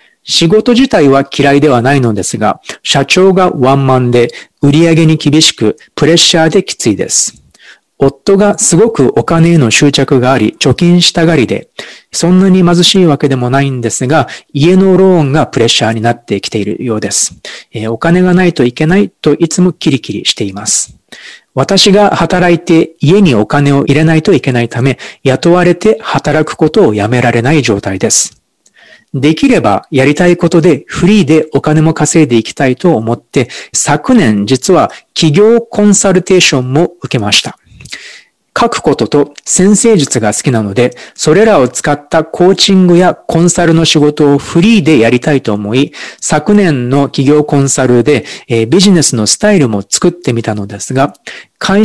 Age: 40-59